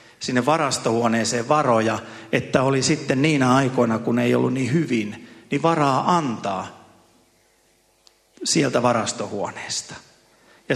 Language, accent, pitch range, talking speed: Finnish, native, 110-135 Hz, 105 wpm